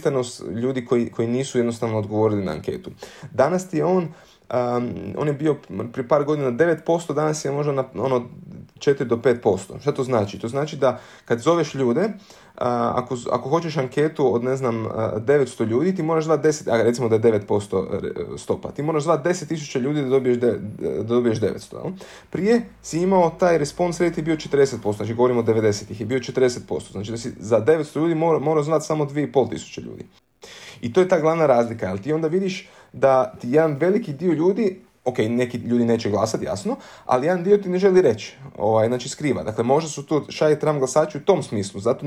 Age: 20-39